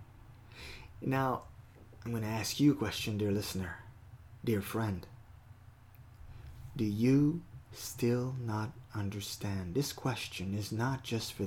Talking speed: 120 wpm